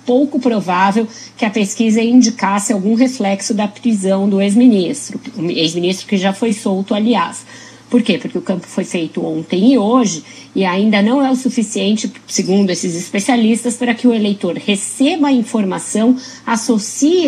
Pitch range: 185-245 Hz